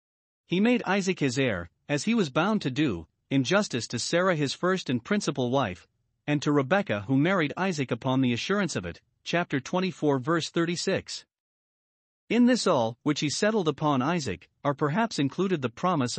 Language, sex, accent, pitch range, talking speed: English, male, American, 130-180 Hz, 180 wpm